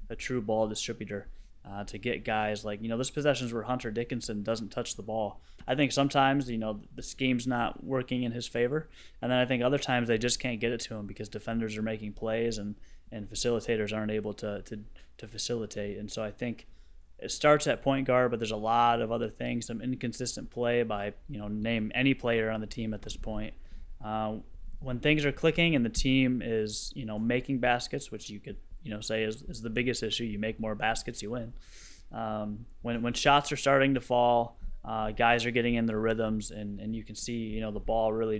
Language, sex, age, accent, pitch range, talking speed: English, male, 20-39, American, 105-120 Hz, 225 wpm